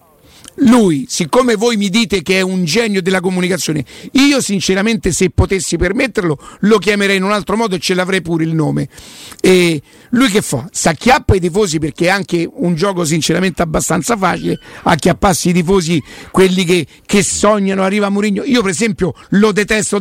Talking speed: 175 wpm